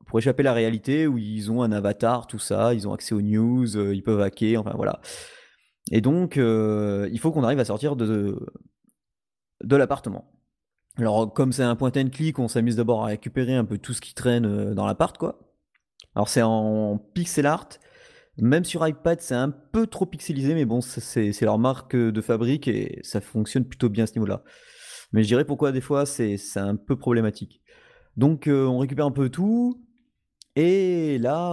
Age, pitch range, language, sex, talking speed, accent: 30-49, 110-145 Hz, French, male, 195 wpm, French